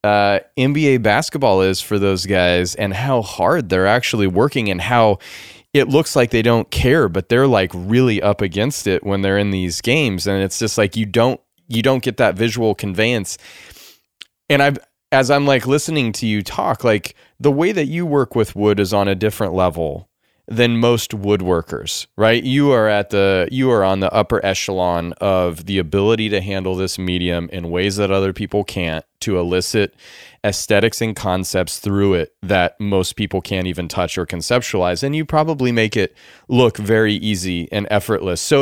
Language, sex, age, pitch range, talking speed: English, male, 20-39, 90-115 Hz, 185 wpm